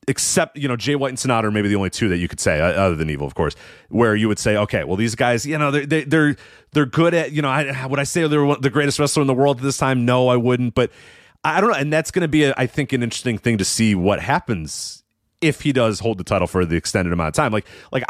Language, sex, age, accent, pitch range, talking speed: English, male, 30-49, American, 95-135 Hz, 290 wpm